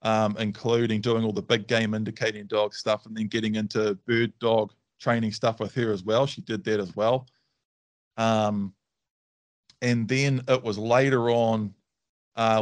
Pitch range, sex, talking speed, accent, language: 105-120 Hz, male, 165 wpm, Australian, English